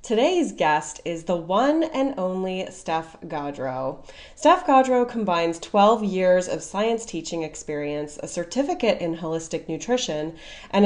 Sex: female